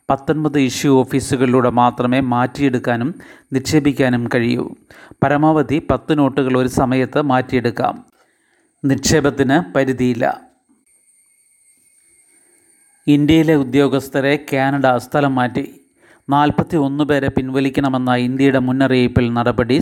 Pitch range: 130-145 Hz